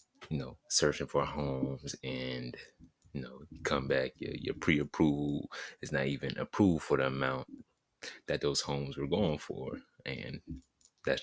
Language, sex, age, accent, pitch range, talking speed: English, male, 30-49, American, 70-85 Hz, 145 wpm